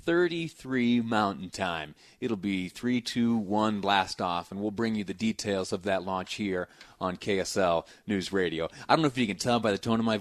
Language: English